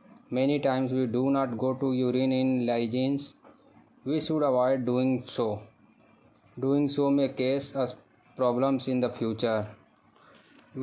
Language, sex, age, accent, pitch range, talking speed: Hindi, male, 20-39, native, 120-135 Hz, 135 wpm